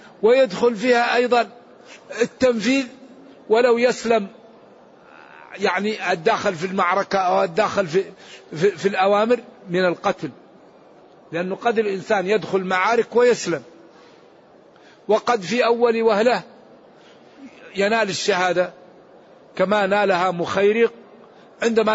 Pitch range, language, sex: 180-225 Hz, Arabic, male